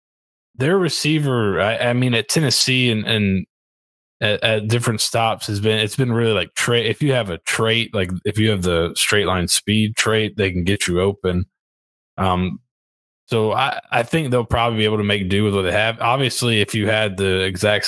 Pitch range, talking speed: 95-110 Hz, 205 wpm